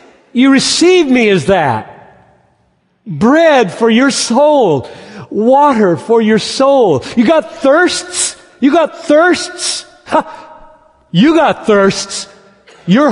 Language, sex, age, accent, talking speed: English, male, 50-69, American, 105 wpm